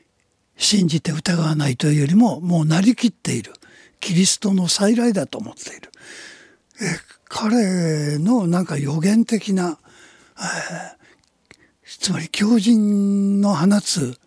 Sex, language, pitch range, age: male, Japanese, 160-235 Hz, 60-79